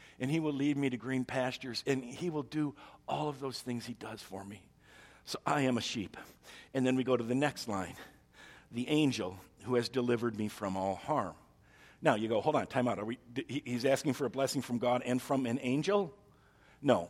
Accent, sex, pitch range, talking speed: American, male, 120-140 Hz, 225 wpm